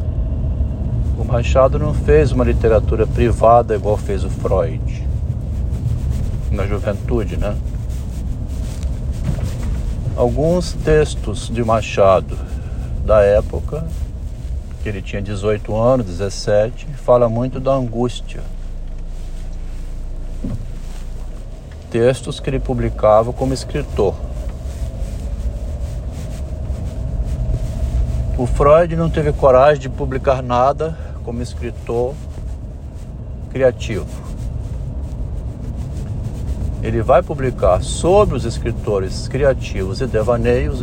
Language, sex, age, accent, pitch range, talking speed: Portuguese, male, 60-79, Brazilian, 90-125 Hz, 80 wpm